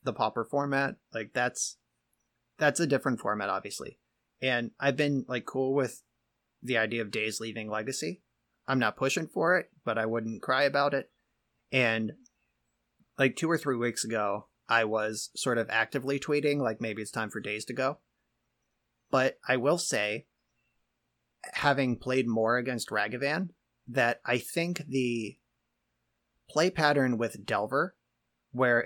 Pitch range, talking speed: 110-135 Hz, 150 wpm